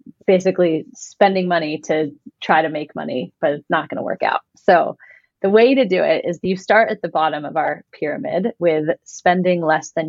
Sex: female